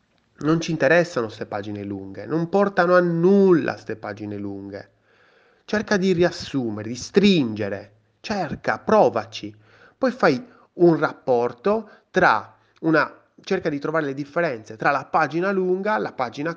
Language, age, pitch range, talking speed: Italian, 30-49, 110-175 Hz, 140 wpm